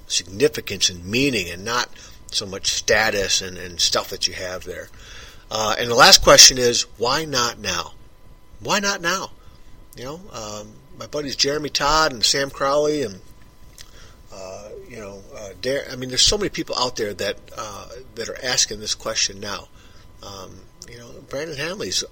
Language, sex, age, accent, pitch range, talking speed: English, male, 50-69, American, 95-140 Hz, 175 wpm